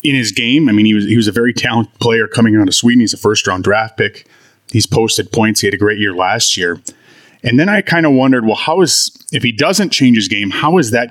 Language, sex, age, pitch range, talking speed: English, male, 30-49, 110-130 Hz, 270 wpm